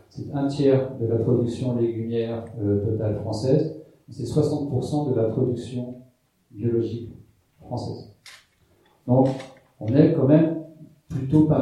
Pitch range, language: 110-140 Hz, French